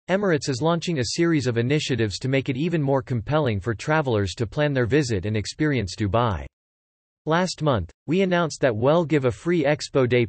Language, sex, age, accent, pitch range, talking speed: English, male, 40-59, American, 110-150 Hz, 190 wpm